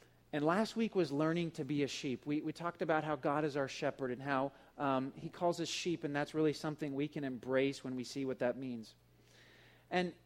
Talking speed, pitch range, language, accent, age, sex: 230 wpm, 125-155 Hz, English, American, 40-59, male